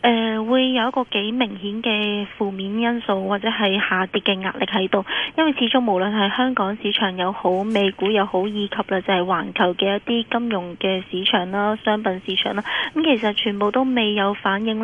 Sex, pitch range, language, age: female, 200-230 Hz, Chinese, 20-39